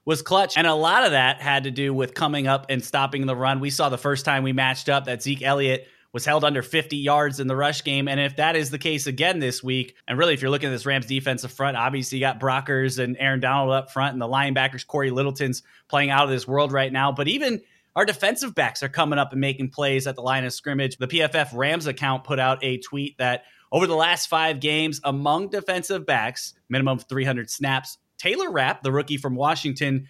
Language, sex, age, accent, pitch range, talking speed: English, male, 20-39, American, 130-150 Hz, 235 wpm